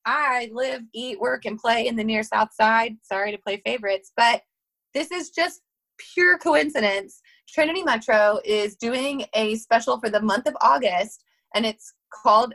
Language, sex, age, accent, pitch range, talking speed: English, female, 20-39, American, 215-280 Hz, 165 wpm